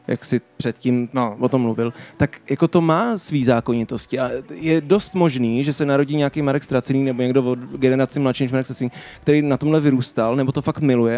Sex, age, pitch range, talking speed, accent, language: male, 20-39, 120-150 Hz, 210 wpm, native, Czech